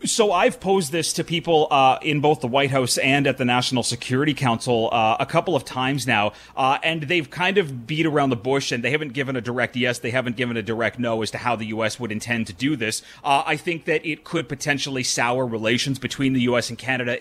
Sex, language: male, English